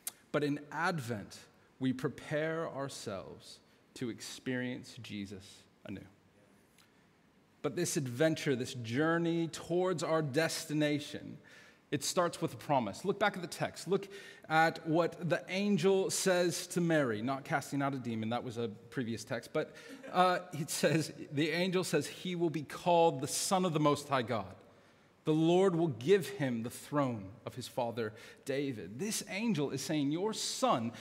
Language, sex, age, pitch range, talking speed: English, male, 40-59, 145-195 Hz, 155 wpm